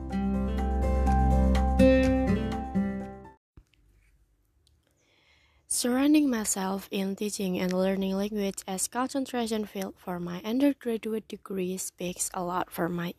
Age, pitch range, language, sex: 20-39, 180-220 Hz, Indonesian, female